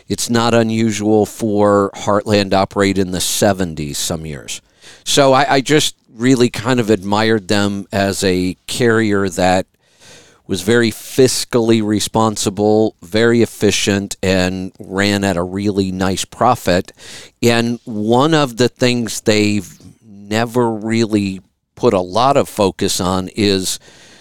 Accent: American